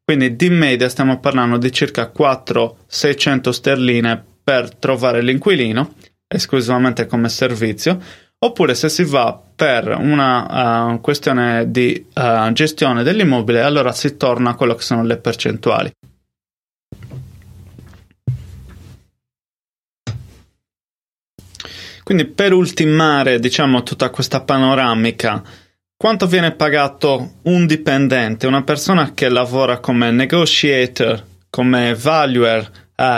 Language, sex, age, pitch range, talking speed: Italian, male, 20-39, 115-145 Hz, 105 wpm